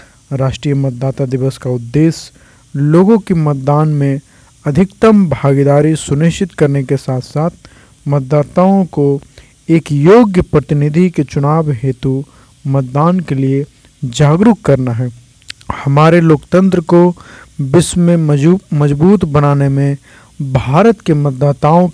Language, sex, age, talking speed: Hindi, male, 50-69, 110 wpm